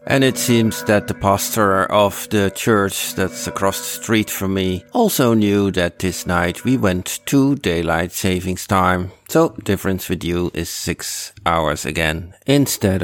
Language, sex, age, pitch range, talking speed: English, male, 50-69, 90-110 Hz, 160 wpm